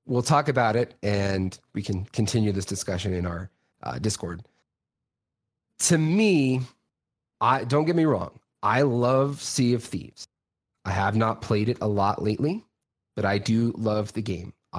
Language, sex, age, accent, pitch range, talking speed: English, male, 30-49, American, 100-125 Hz, 160 wpm